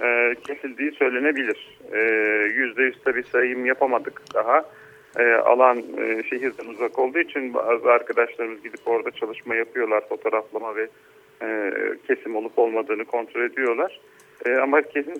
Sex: male